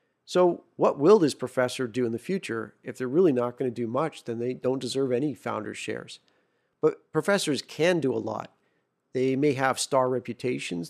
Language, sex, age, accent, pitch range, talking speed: English, male, 40-59, American, 115-135 Hz, 195 wpm